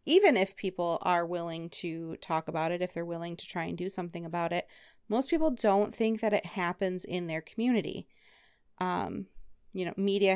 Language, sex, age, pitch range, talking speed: English, female, 30-49, 170-200 Hz, 190 wpm